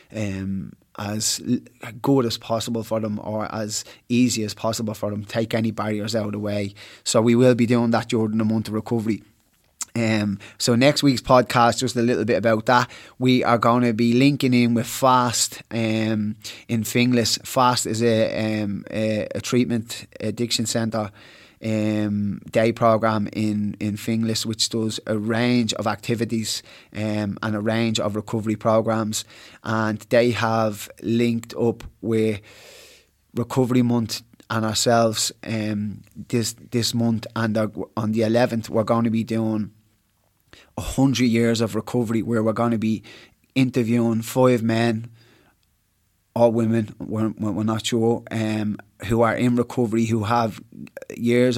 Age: 20-39